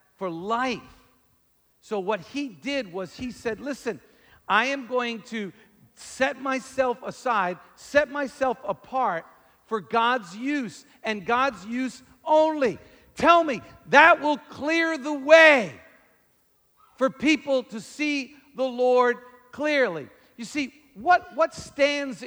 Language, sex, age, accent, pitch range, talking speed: English, male, 50-69, American, 195-270 Hz, 125 wpm